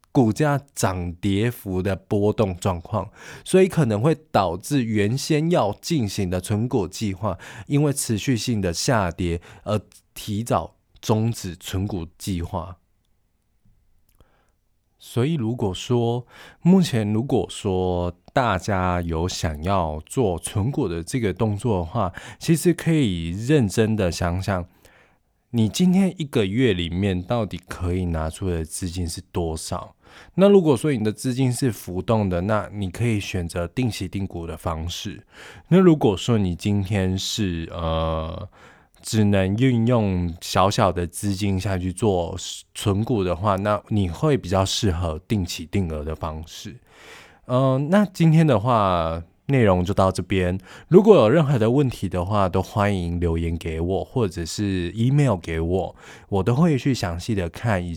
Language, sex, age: Chinese, male, 20-39